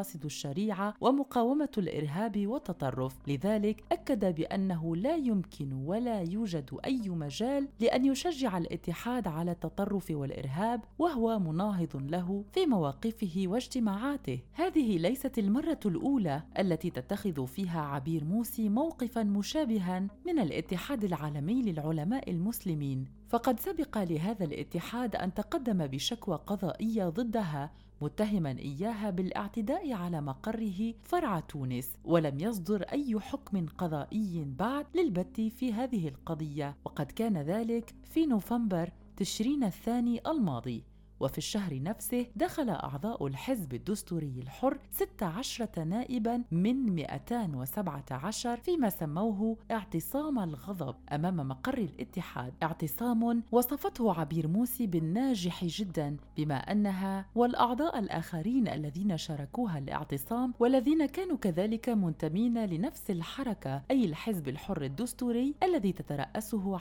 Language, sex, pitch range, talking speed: Arabic, female, 165-240 Hz, 105 wpm